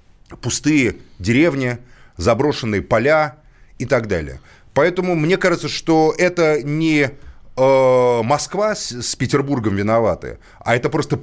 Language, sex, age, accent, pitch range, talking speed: Russian, male, 30-49, native, 115-155 Hz, 120 wpm